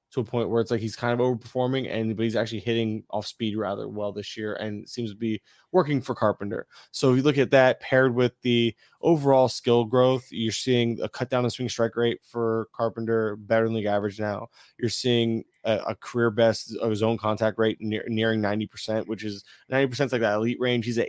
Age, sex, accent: 20-39, male, American